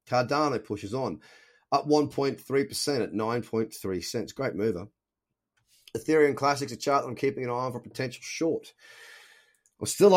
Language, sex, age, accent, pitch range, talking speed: English, male, 30-49, Australian, 110-145 Hz, 155 wpm